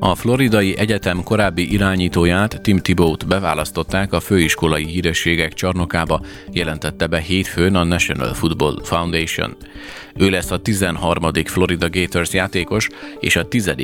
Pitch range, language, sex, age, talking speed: 85-95 Hz, Hungarian, male, 30-49, 125 wpm